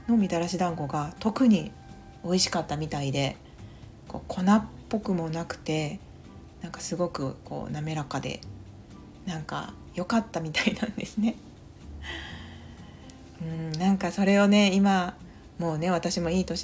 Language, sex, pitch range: Japanese, female, 155-200 Hz